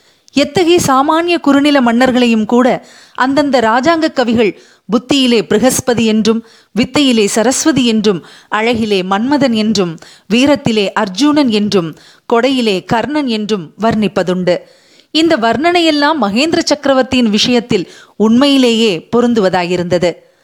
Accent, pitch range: native, 210-280 Hz